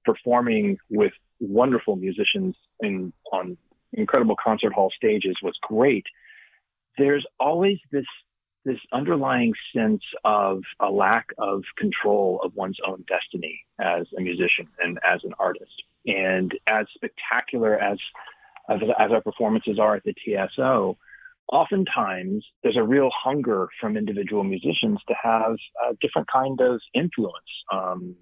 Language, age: English, 40-59